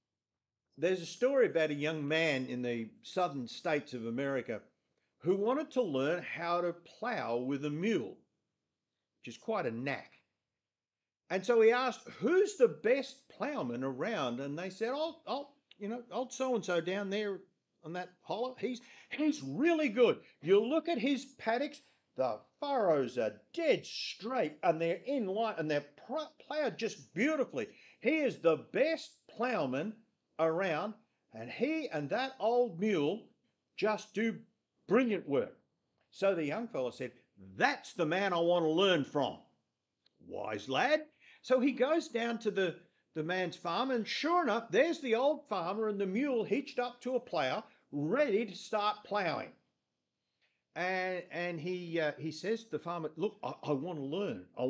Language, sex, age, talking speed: English, male, 50-69, 160 wpm